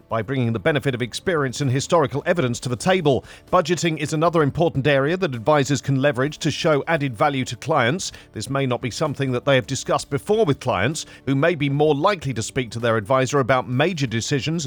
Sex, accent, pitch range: male, British, 125-150 Hz